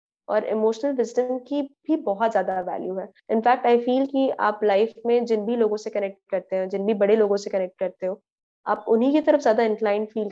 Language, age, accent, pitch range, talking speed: Hindi, 20-39, native, 210-265 Hz, 220 wpm